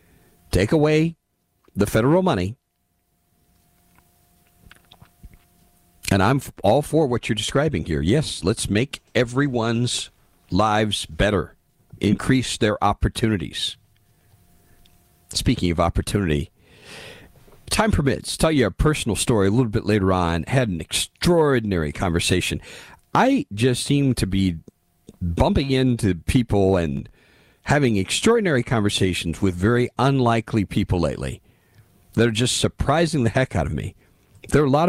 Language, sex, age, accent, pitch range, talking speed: English, male, 50-69, American, 90-125 Hz, 120 wpm